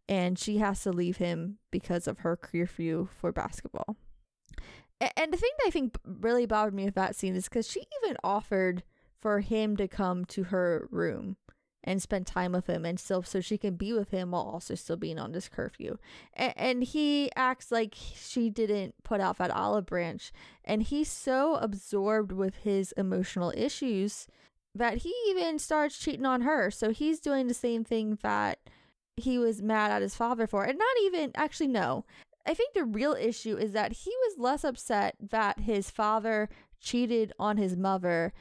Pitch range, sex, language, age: 190-245 Hz, female, English, 10-29